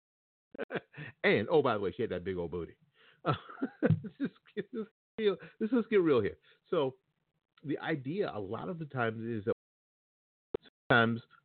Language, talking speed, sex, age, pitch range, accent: English, 185 wpm, male, 50-69, 115-160 Hz, American